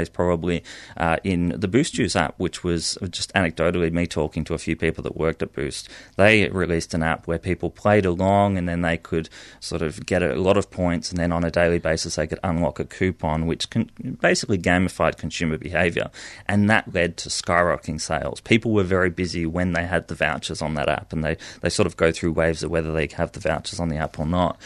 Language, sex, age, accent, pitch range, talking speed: English, male, 30-49, Australian, 85-105 Hz, 225 wpm